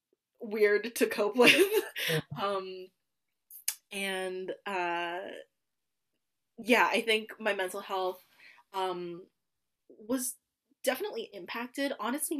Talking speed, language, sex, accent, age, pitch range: 85 wpm, English, female, American, 20-39, 185-240 Hz